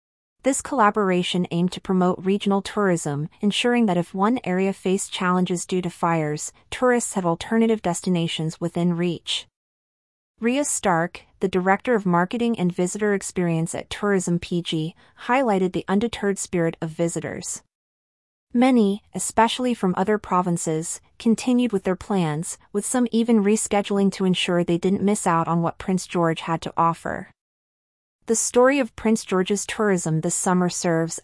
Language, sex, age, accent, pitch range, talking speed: English, female, 30-49, American, 170-210 Hz, 145 wpm